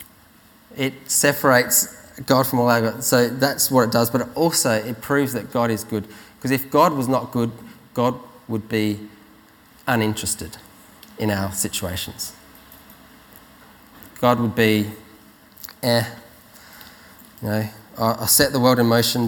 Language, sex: English, male